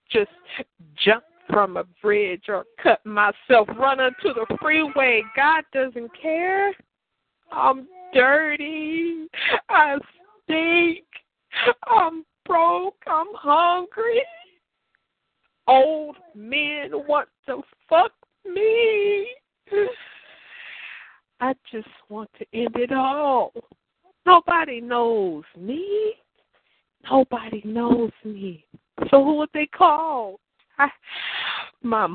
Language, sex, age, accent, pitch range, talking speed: English, female, 50-69, American, 215-330 Hz, 90 wpm